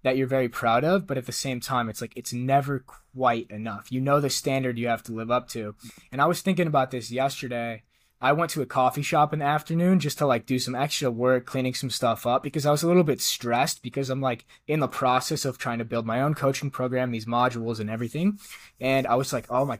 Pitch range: 120-140 Hz